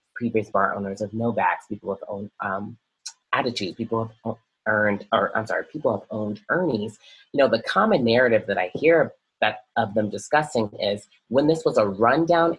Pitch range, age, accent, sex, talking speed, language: 100-115 Hz, 30-49, American, female, 175 wpm, English